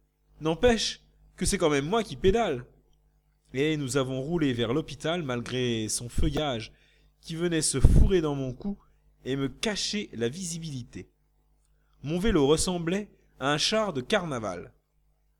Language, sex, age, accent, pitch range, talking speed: French, male, 30-49, French, 135-190 Hz, 150 wpm